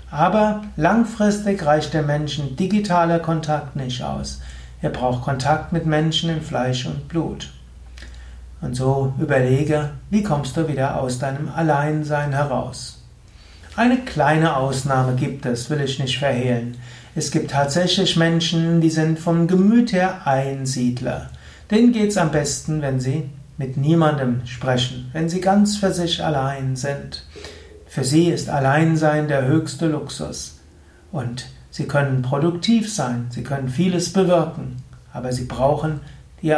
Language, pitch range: German, 130-165 Hz